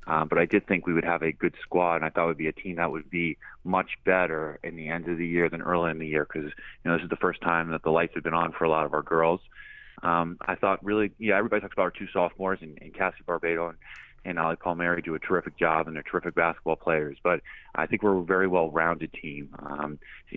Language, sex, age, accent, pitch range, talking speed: English, male, 30-49, American, 80-90 Hz, 270 wpm